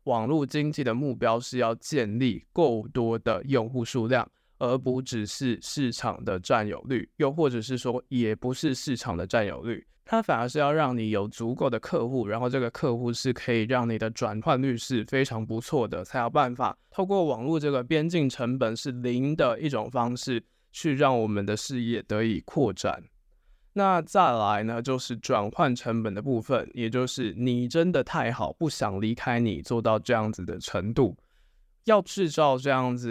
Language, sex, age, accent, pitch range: Chinese, male, 20-39, native, 115-140 Hz